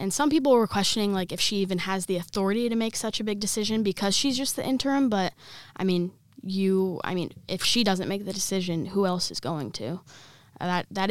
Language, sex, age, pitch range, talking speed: English, female, 10-29, 170-205 Hz, 240 wpm